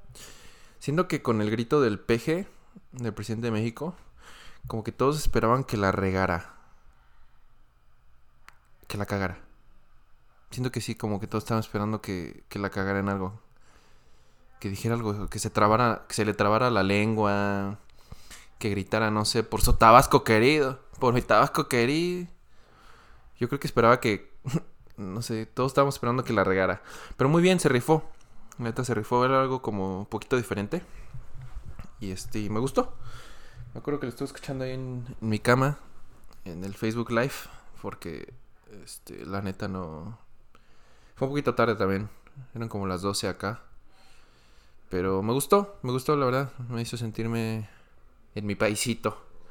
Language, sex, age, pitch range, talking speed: Spanish, male, 20-39, 100-125 Hz, 165 wpm